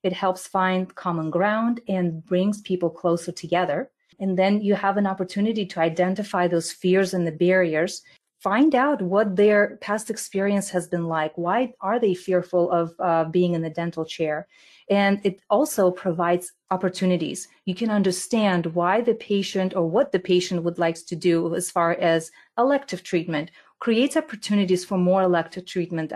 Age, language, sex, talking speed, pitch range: 30-49, English, female, 165 wpm, 175-205 Hz